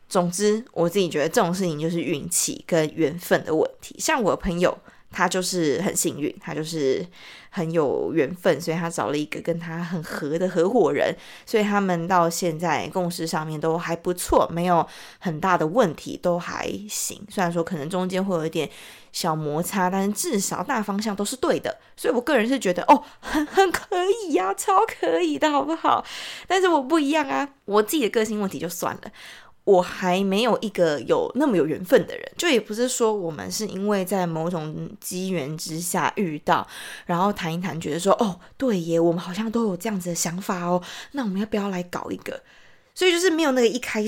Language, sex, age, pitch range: Chinese, female, 20-39, 170-230 Hz